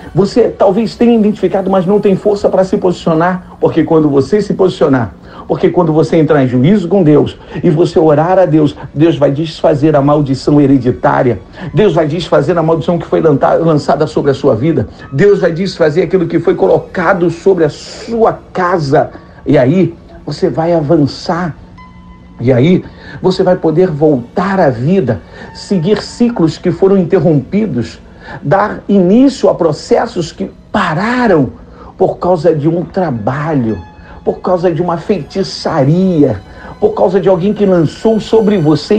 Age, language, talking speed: 50-69, Portuguese, 155 wpm